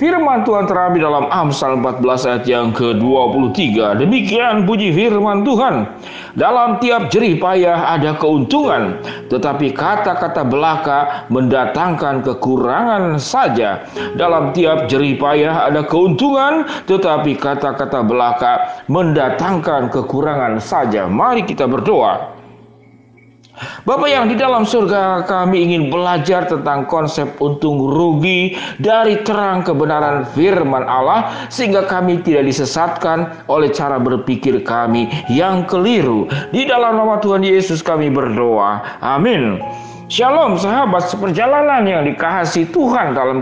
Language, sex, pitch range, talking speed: Indonesian, male, 140-200 Hz, 115 wpm